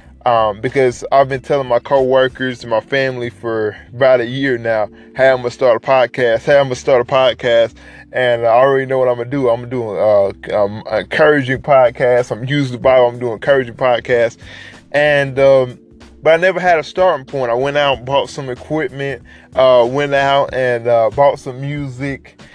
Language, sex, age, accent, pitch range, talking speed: English, male, 20-39, American, 115-140 Hz, 220 wpm